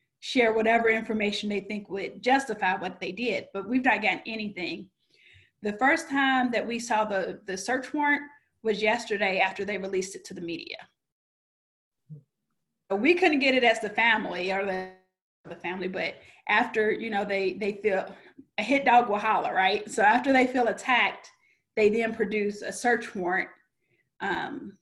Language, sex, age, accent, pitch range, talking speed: English, female, 30-49, American, 195-245 Hz, 170 wpm